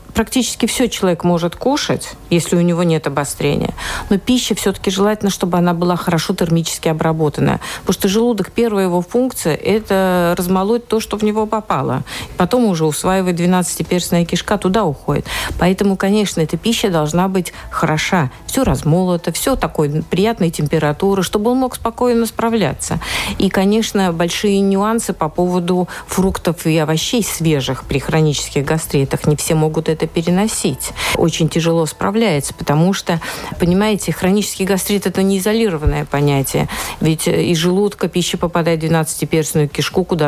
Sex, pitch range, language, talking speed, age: female, 160-200 Hz, Russian, 145 wpm, 50-69